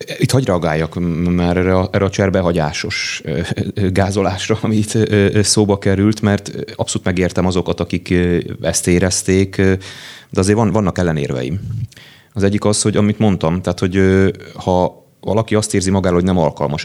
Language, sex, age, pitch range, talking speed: Hungarian, male, 30-49, 90-110 Hz, 145 wpm